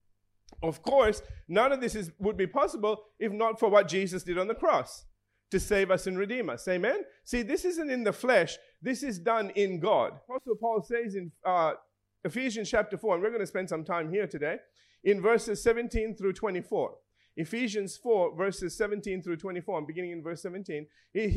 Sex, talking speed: male, 190 wpm